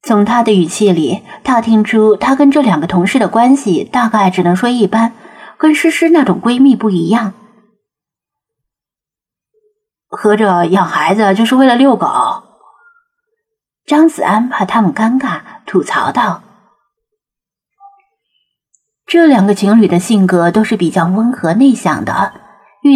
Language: Chinese